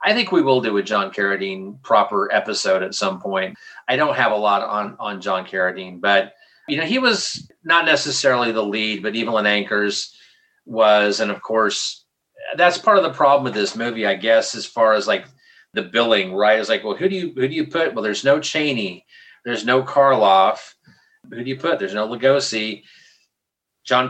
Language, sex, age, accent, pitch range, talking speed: English, male, 30-49, American, 110-155 Hz, 195 wpm